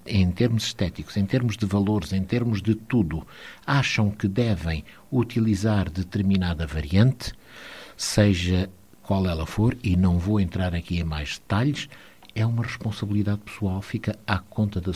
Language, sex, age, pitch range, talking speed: Portuguese, male, 60-79, 95-120 Hz, 150 wpm